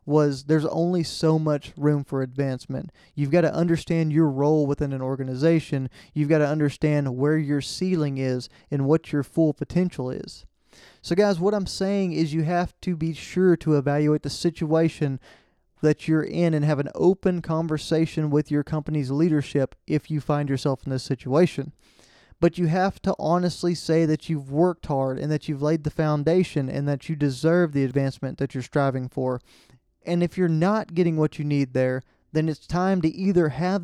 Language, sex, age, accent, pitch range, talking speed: English, male, 20-39, American, 145-175 Hz, 190 wpm